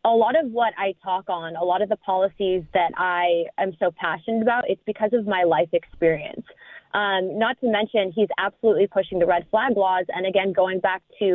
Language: English